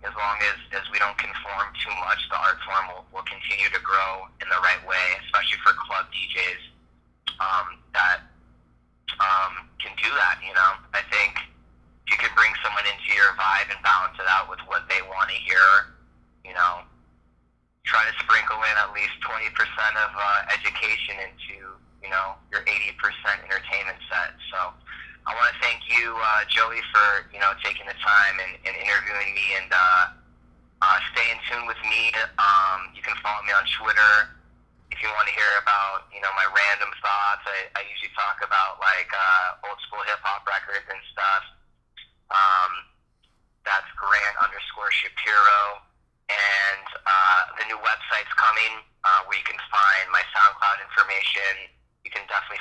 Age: 20-39